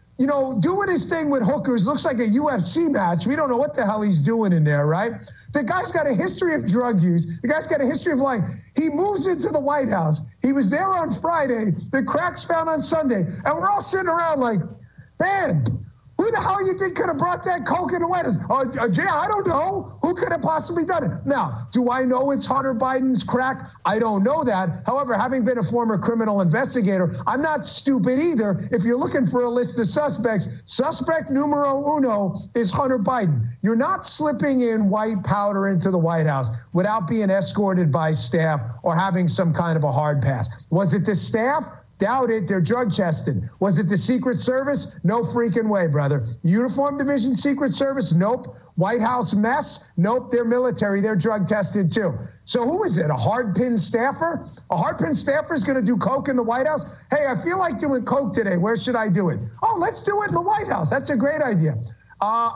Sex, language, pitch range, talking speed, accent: male, English, 190-280 Hz, 210 wpm, American